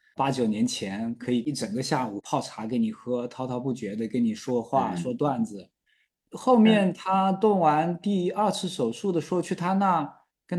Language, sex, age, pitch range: Chinese, male, 20-39, 125-185 Hz